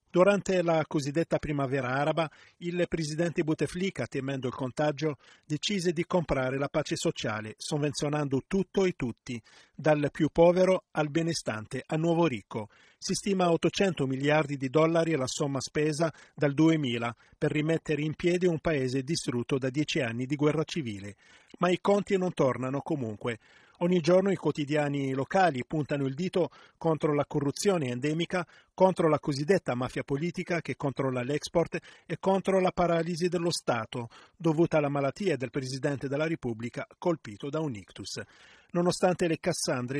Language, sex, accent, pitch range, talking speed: Italian, male, native, 140-175 Hz, 150 wpm